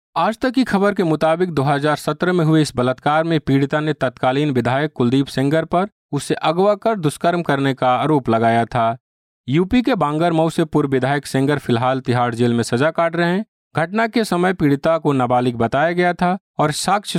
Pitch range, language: 115-155 Hz, Hindi